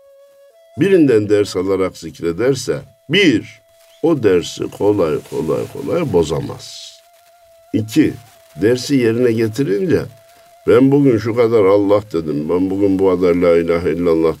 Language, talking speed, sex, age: Turkish, 115 wpm, male, 60-79